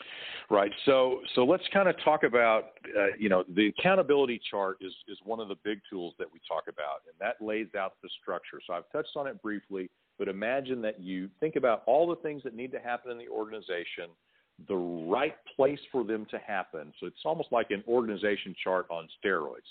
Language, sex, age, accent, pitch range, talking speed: English, male, 40-59, American, 100-135 Hz, 210 wpm